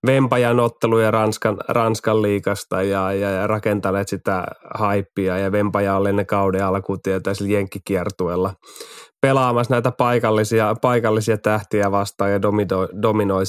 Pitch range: 100-110 Hz